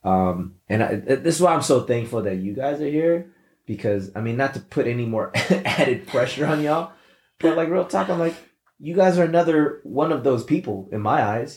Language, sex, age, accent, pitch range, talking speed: English, male, 20-39, American, 100-130 Hz, 225 wpm